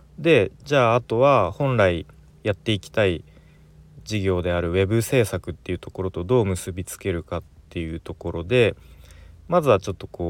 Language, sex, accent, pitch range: Japanese, male, native, 80-120 Hz